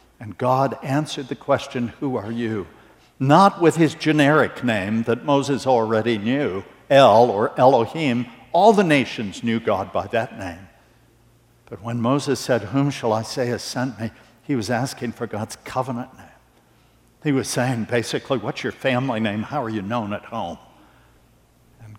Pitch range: 110-140 Hz